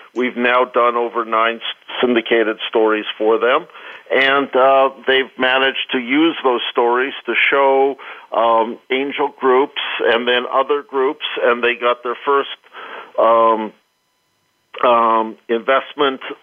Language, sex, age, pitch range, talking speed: English, male, 50-69, 115-135 Hz, 125 wpm